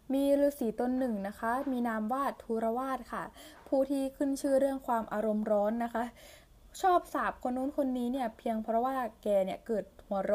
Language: Thai